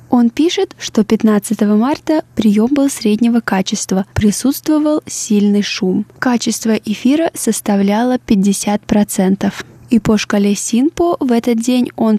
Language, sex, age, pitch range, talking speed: Russian, female, 20-39, 200-240 Hz, 120 wpm